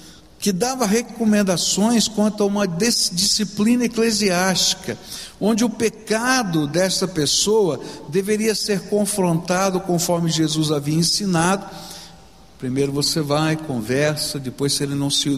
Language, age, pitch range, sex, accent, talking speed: Portuguese, 60-79, 165-225 Hz, male, Brazilian, 110 wpm